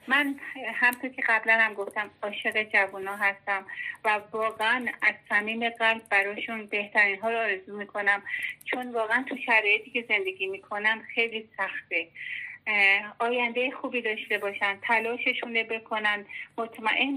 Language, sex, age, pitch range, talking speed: Persian, female, 30-49, 200-240 Hz, 130 wpm